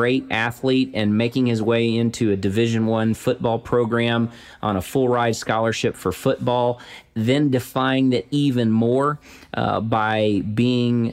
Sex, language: male, English